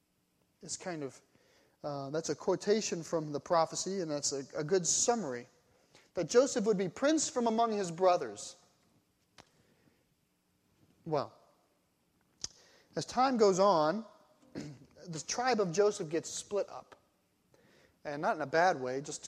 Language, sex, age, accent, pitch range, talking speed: English, male, 30-49, American, 175-245 Hz, 135 wpm